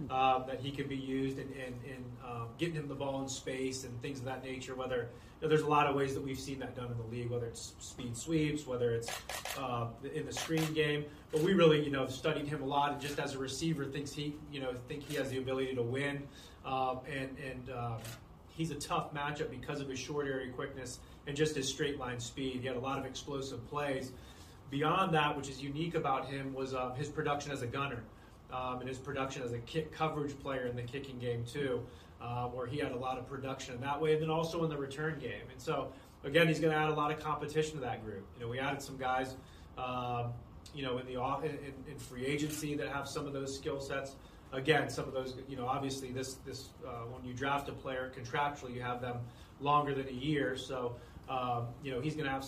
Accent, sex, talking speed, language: American, male, 240 wpm, English